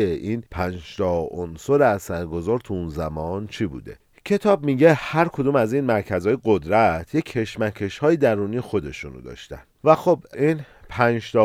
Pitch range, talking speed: 95-130 Hz, 145 wpm